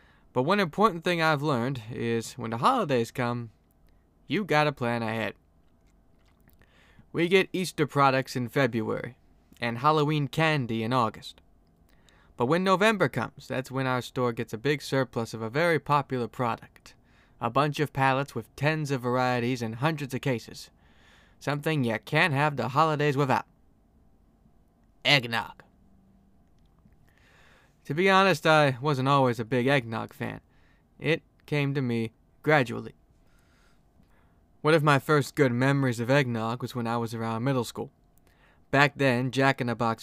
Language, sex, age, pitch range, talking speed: English, male, 20-39, 110-140 Hz, 145 wpm